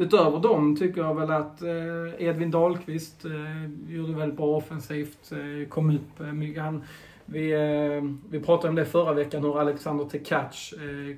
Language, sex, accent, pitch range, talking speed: Swedish, male, native, 145-155 Hz, 135 wpm